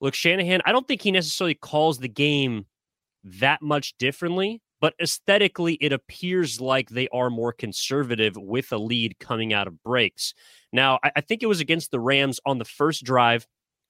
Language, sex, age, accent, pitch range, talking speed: English, male, 30-49, American, 115-145 Hz, 175 wpm